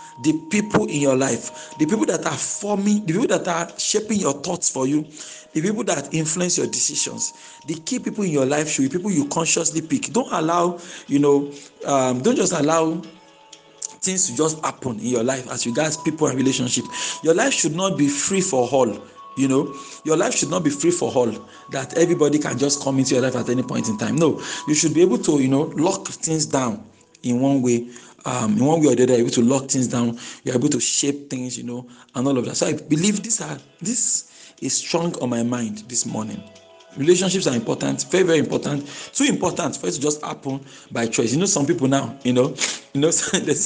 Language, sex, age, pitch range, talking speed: English, male, 50-69, 130-170 Hz, 225 wpm